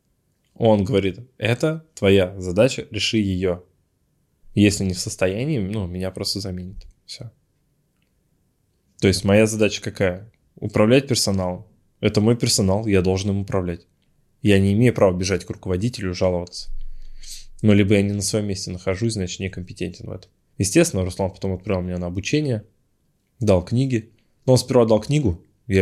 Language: Russian